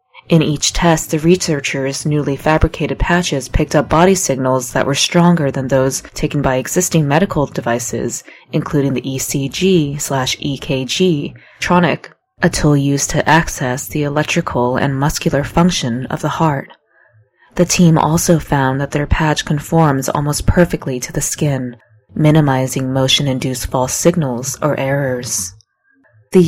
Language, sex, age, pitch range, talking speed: English, female, 20-39, 130-160 Hz, 130 wpm